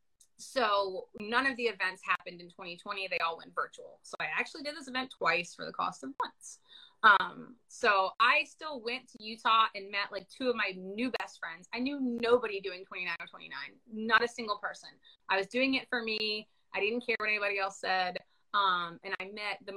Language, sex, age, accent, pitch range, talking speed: English, female, 20-39, American, 185-245 Hz, 205 wpm